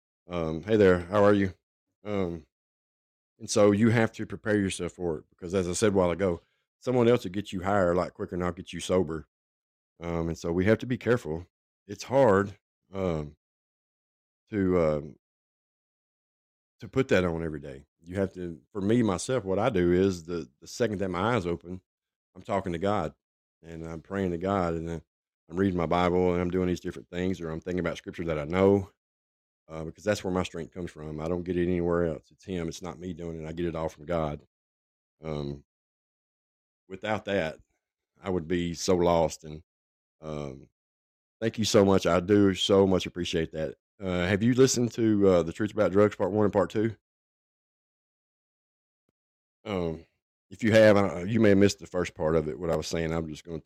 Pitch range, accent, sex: 80-100 Hz, American, male